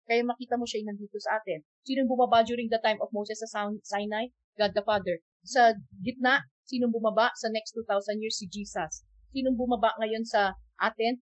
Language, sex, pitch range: Filipino, female, 200-245 Hz